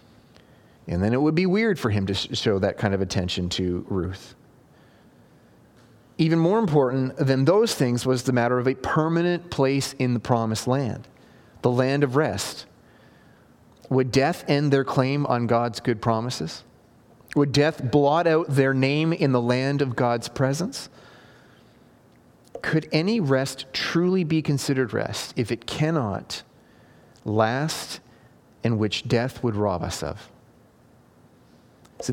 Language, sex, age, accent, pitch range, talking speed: English, male, 30-49, American, 120-155 Hz, 145 wpm